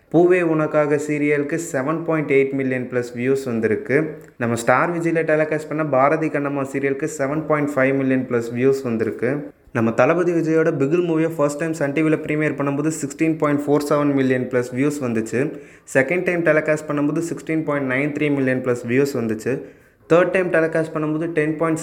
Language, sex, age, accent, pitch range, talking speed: Tamil, male, 20-39, native, 135-155 Hz, 150 wpm